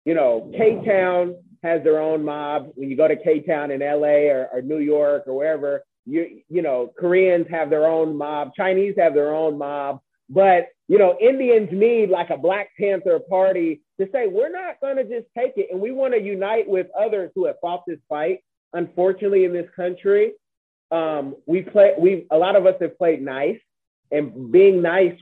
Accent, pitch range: American, 150-200 Hz